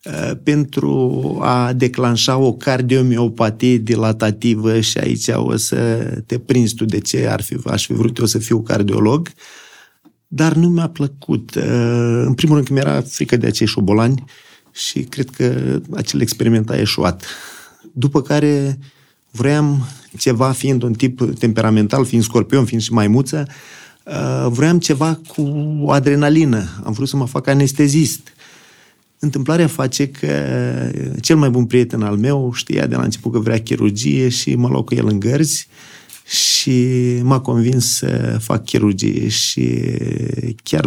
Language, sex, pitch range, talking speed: Romanian, male, 110-135 Hz, 140 wpm